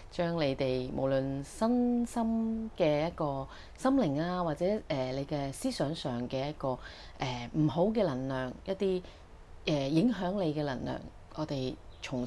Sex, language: female, Chinese